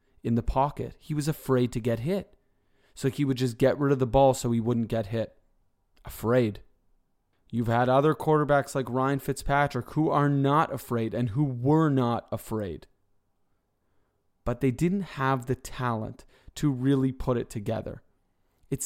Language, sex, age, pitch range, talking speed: English, male, 30-49, 115-140 Hz, 165 wpm